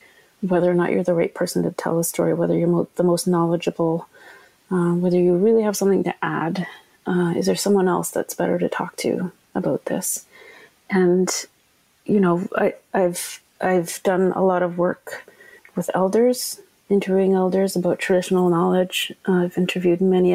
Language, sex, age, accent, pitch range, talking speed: English, female, 30-49, Canadian, 175-195 Hz, 170 wpm